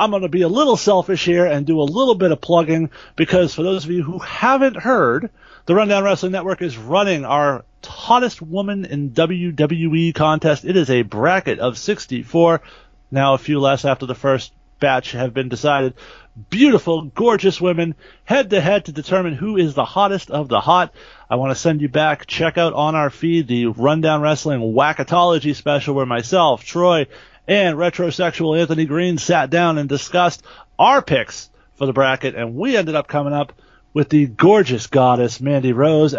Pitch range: 140-180 Hz